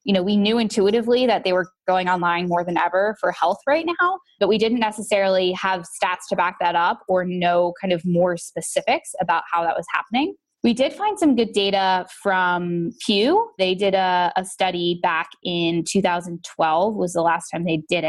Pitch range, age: 175-210 Hz, 20-39